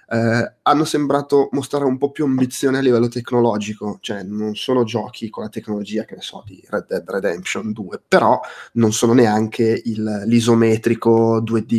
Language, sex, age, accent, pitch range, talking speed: Italian, male, 20-39, native, 110-130 Hz, 170 wpm